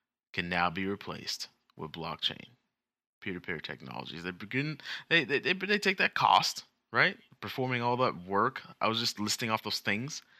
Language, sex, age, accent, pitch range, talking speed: English, male, 20-39, American, 95-135 Hz, 165 wpm